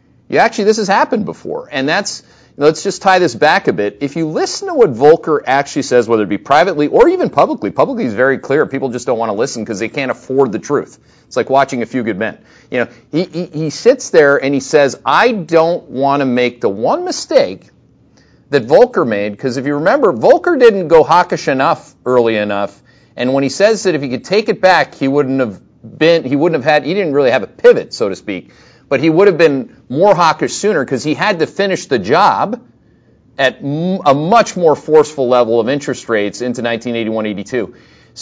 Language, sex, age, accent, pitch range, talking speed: English, male, 40-59, American, 125-180 Hz, 225 wpm